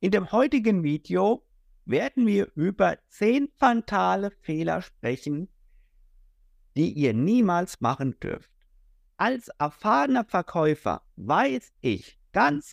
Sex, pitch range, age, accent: male, 150-240 Hz, 50-69, German